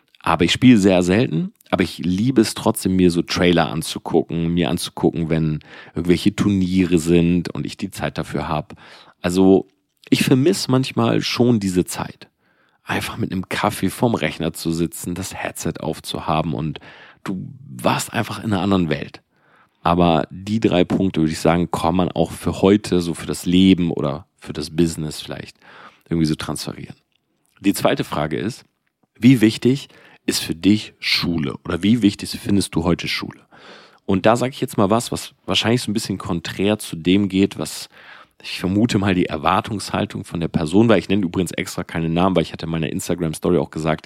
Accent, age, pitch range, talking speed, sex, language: German, 40-59, 85-105 Hz, 180 wpm, male, German